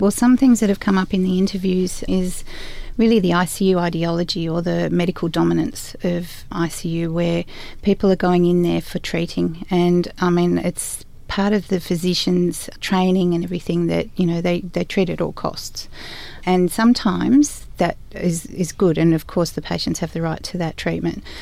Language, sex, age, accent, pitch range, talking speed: English, female, 30-49, Australian, 165-180 Hz, 185 wpm